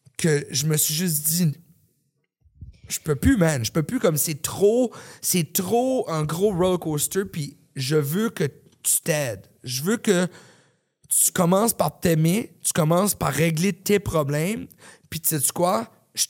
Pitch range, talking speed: 140-180 Hz, 175 wpm